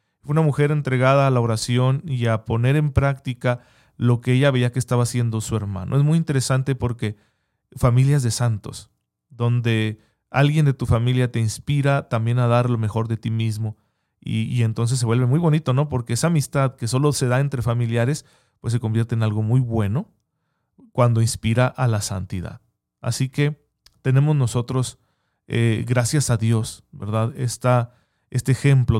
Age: 40-59